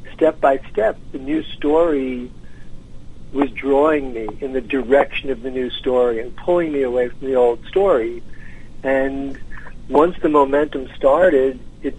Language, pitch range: English, 130-160 Hz